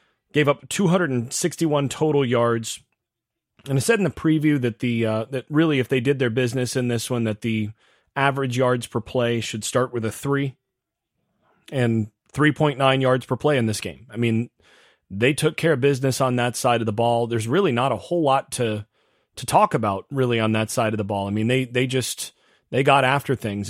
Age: 30-49